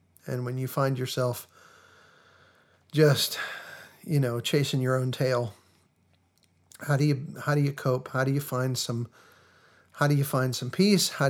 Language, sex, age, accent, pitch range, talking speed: English, male, 50-69, American, 125-145 Hz, 165 wpm